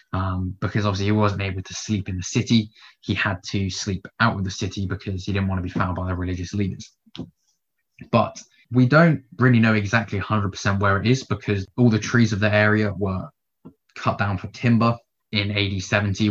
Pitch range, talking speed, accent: 95-110 Hz, 200 wpm, British